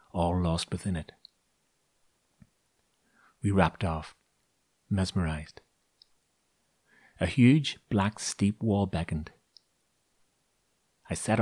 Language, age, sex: English, 40-59, male